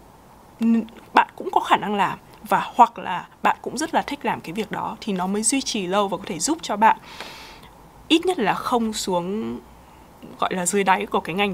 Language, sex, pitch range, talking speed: Vietnamese, female, 195-260 Hz, 220 wpm